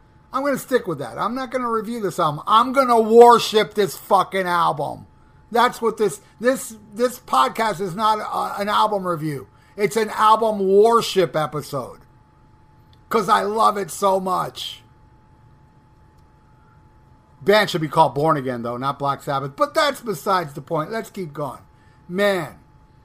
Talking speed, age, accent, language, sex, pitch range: 160 wpm, 50-69, American, English, male, 150-210 Hz